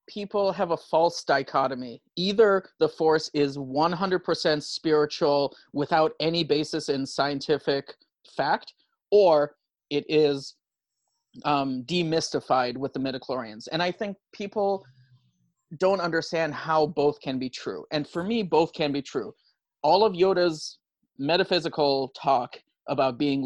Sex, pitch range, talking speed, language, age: male, 140-170 Hz, 130 wpm, English, 30-49